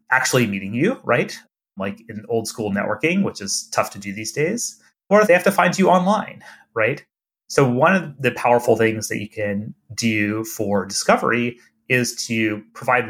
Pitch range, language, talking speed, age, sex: 110-155 Hz, English, 180 wpm, 30-49, male